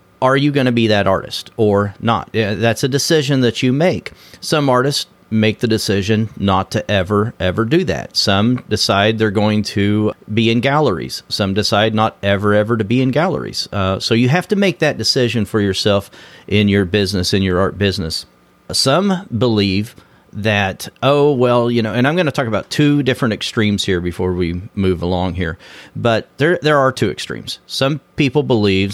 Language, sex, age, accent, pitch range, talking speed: English, male, 40-59, American, 100-125 Hz, 190 wpm